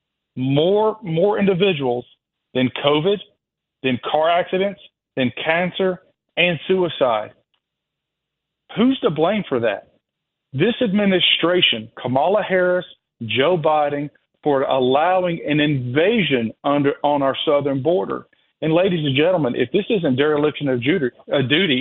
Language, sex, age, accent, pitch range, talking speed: English, male, 40-59, American, 140-180 Hz, 115 wpm